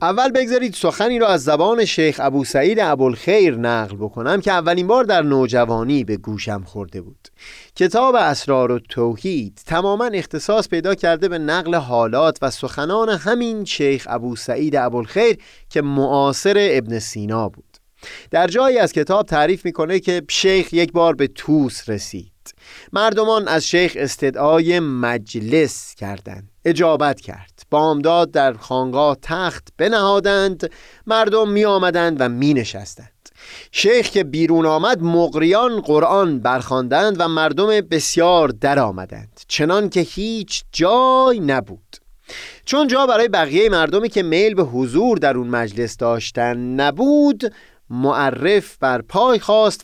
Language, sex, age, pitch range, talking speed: Persian, male, 30-49, 130-205 Hz, 130 wpm